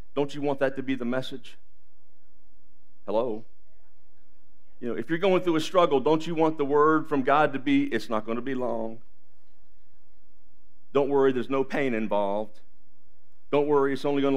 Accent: American